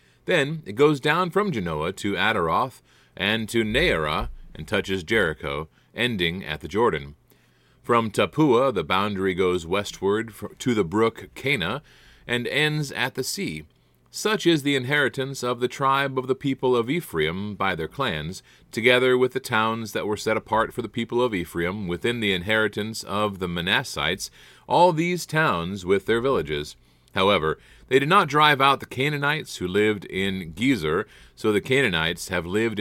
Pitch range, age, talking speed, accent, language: 90-130 Hz, 30-49, 165 wpm, American, English